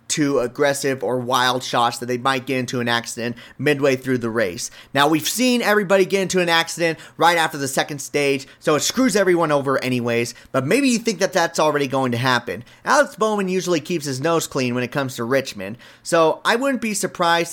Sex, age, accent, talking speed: male, 30-49, American, 210 wpm